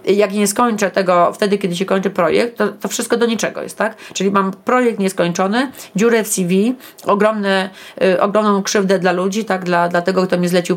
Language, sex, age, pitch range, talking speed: Polish, female, 30-49, 180-210 Hz, 200 wpm